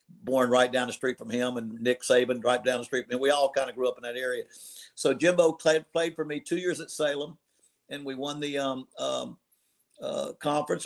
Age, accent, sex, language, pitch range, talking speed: 50-69, American, male, English, 125-150 Hz, 240 wpm